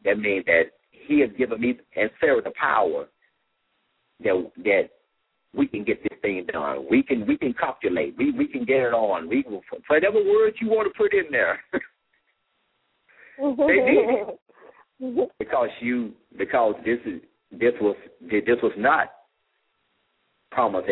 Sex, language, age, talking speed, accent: male, English, 60-79, 150 wpm, American